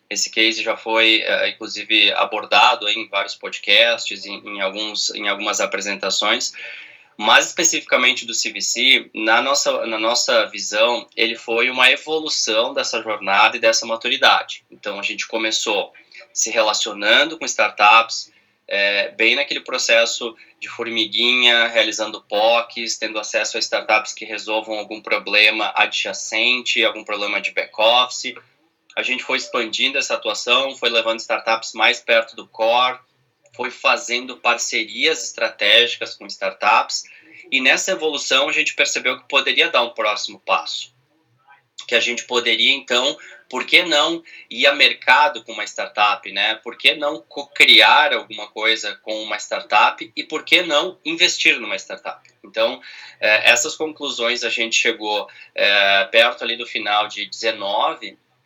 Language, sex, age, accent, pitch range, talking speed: Portuguese, male, 20-39, Brazilian, 110-125 Hz, 140 wpm